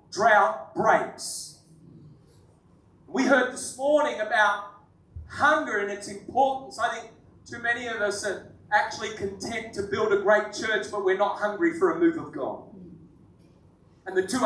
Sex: male